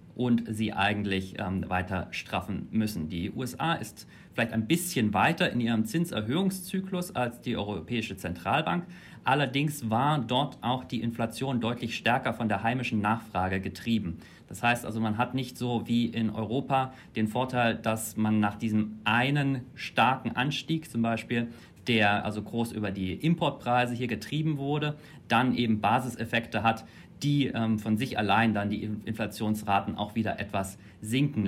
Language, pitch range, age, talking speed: English, 110-130 Hz, 40-59, 150 wpm